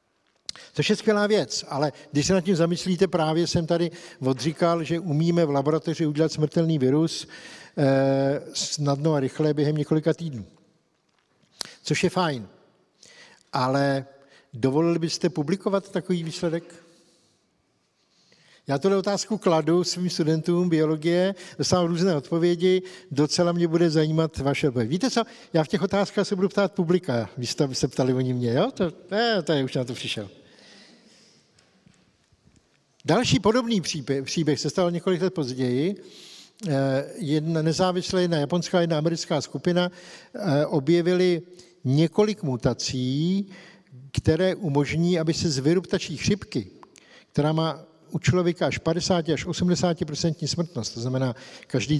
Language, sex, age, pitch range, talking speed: Czech, male, 60-79, 145-180 Hz, 135 wpm